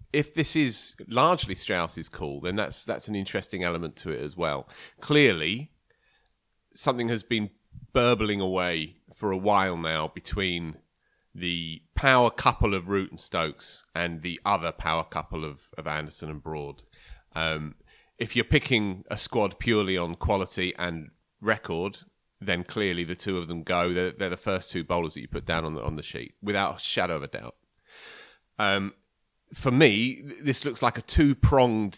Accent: British